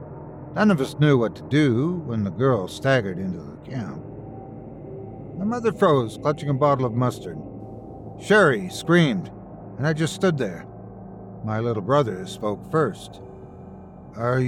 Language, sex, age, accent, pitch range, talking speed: English, male, 60-79, American, 110-155 Hz, 145 wpm